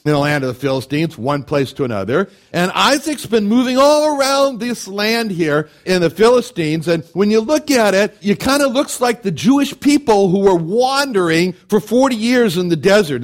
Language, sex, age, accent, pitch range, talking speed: English, male, 60-79, American, 165-220 Hz, 200 wpm